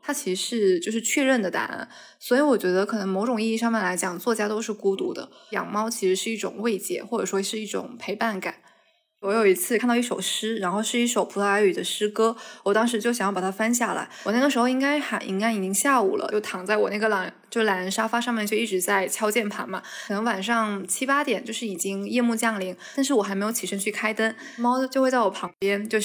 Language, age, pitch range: Chinese, 20-39, 195-240 Hz